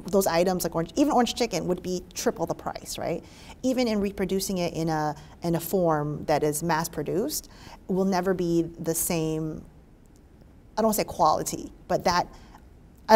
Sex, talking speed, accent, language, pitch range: female, 180 wpm, American, English, 165-200 Hz